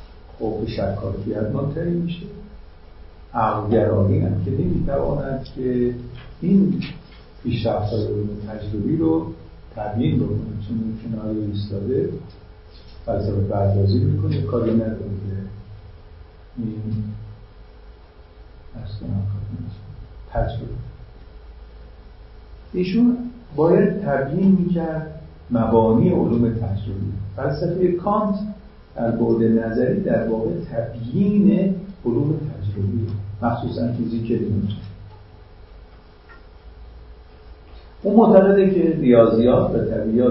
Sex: male